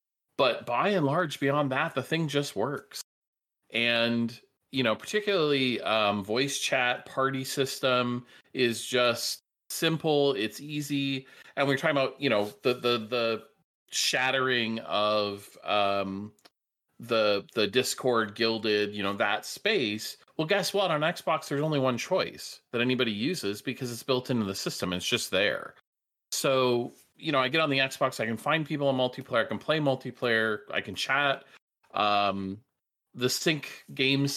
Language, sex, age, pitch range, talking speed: English, male, 30-49, 105-140 Hz, 155 wpm